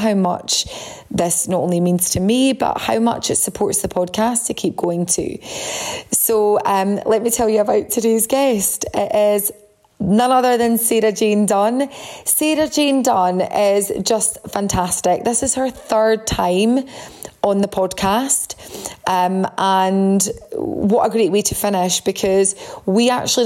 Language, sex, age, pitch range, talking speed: English, female, 20-39, 185-230 Hz, 155 wpm